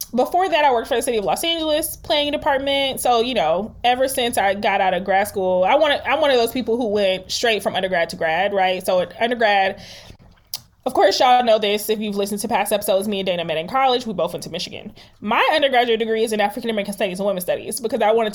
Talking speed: 250 wpm